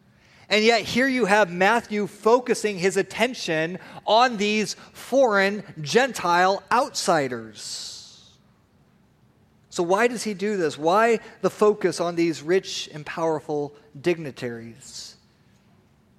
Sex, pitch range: male, 160-220 Hz